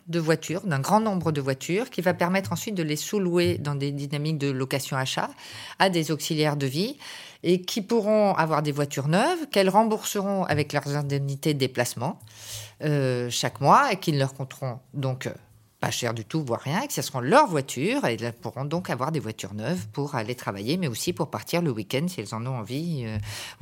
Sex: female